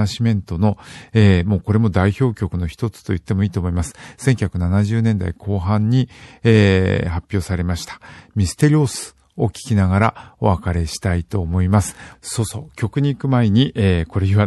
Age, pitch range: 50-69, 95-115 Hz